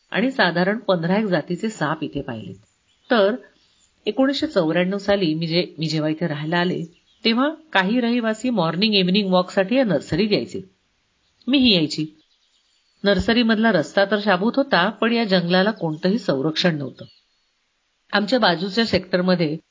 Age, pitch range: 40-59, 165-210 Hz